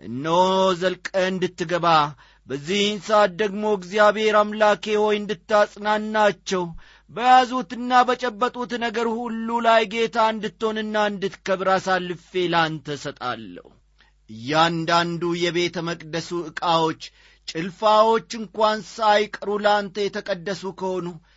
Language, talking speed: Amharic, 85 wpm